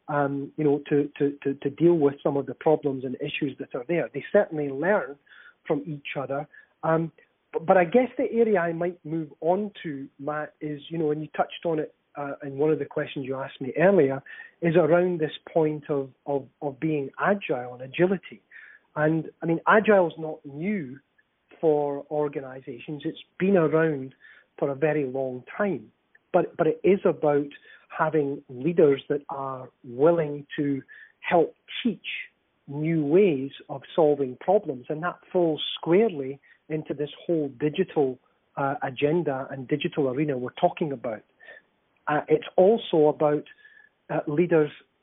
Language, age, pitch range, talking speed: English, 40-59, 140-165 Hz, 160 wpm